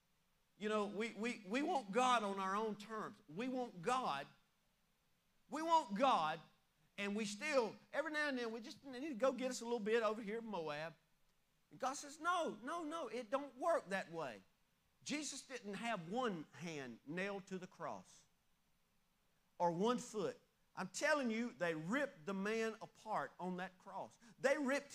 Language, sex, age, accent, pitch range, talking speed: English, male, 40-59, American, 200-280 Hz, 180 wpm